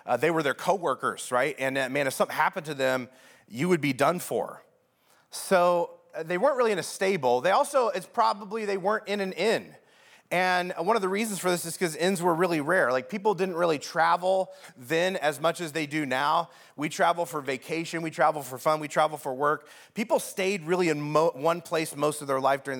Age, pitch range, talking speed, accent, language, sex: 30-49, 150-185 Hz, 220 wpm, American, English, male